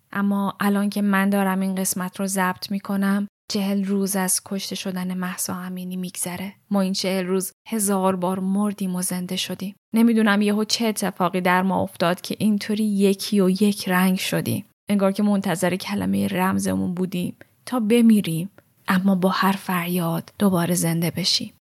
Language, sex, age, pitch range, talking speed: Persian, female, 10-29, 190-220 Hz, 155 wpm